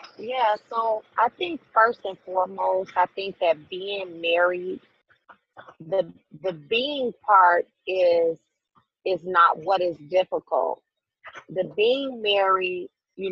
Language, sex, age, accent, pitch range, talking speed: English, female, 30-49, American, 180-215 Hz, 115 wpm